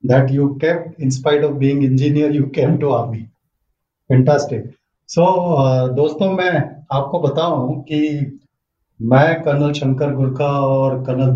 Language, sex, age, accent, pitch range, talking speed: Hindi, male, 40-59, native, 140-175 Hz, 125 wpm